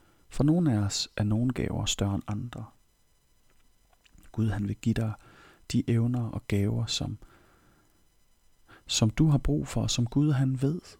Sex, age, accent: male, 40-59, native